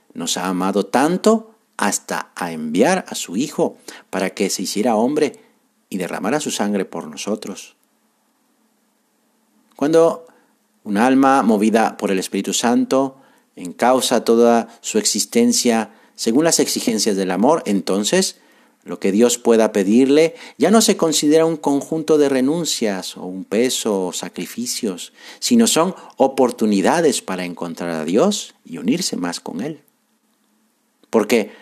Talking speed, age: 135 wpm, 50-69